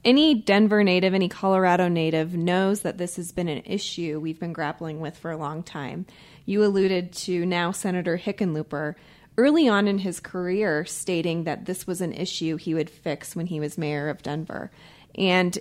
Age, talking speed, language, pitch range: 30-49, 185 wpm, English, 160-195 Hz